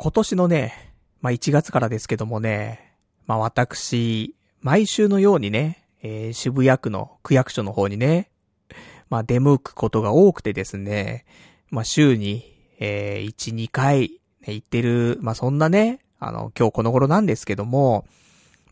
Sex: male